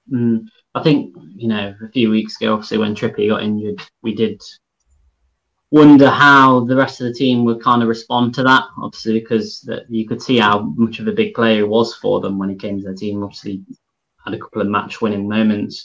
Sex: male